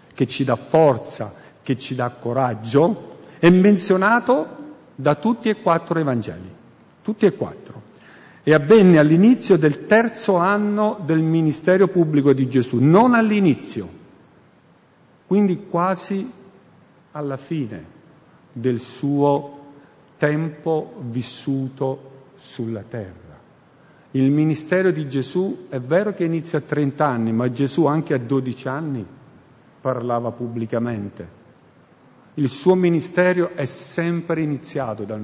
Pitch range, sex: 130-175 Hz, male